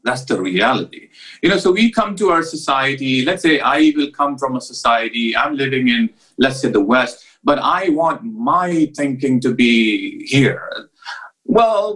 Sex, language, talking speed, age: male, English, 175 wpm, 40-59